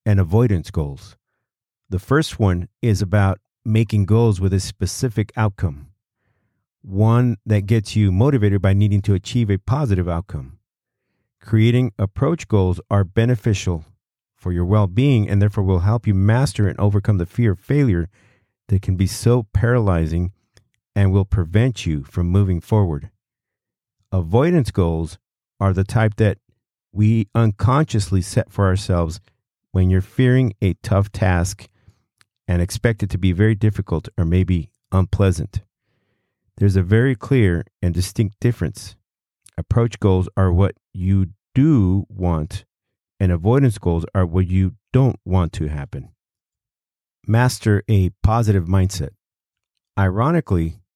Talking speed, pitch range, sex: 135 wpm, 95-115 Hz, male